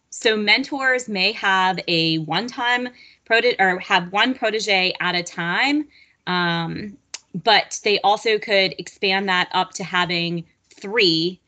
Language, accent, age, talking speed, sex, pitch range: English, American, 20-39, 135 wpm, female, 180-220 Hz